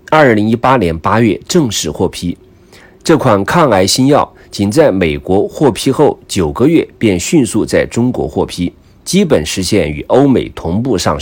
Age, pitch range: 50-69, 90-130 Hz